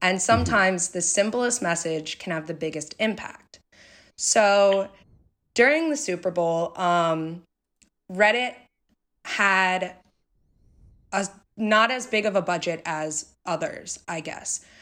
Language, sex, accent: English, female, American